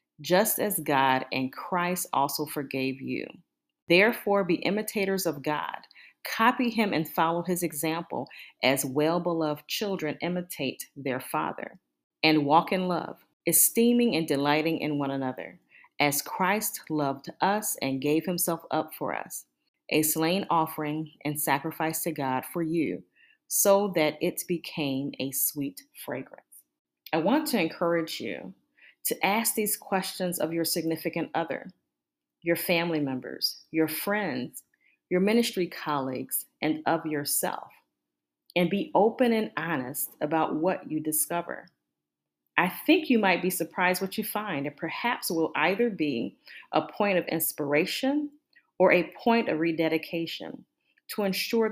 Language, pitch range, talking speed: English, 150-195 Hz, 140 wpm